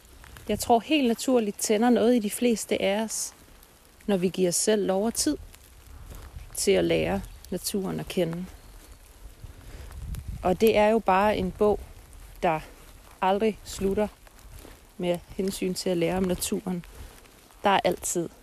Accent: native